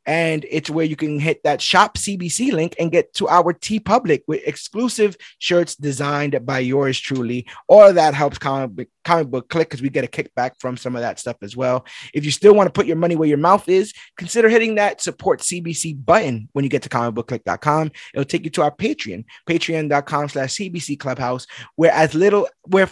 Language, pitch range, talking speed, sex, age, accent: English, 145-200 Hz, 200 wpm, male, 20-39, American